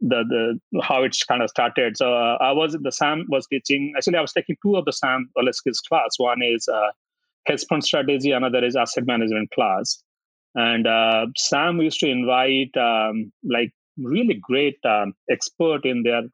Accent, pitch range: Indian, 120-160 Hz